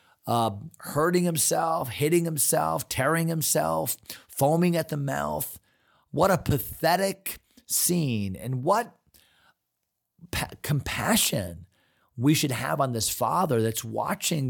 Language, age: English, 40-59